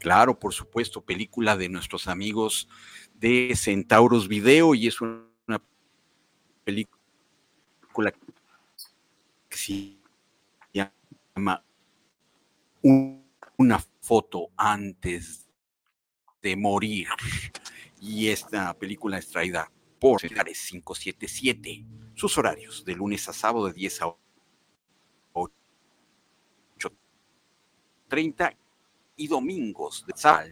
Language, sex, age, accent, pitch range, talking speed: Spanish, male, 50-69, Mexican, 90-115 Hz, 85 wpm